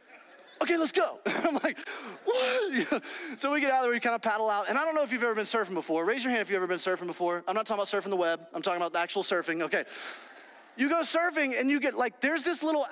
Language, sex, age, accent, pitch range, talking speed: English, male, 20-39, American, 220-290 Hz, 285 wpm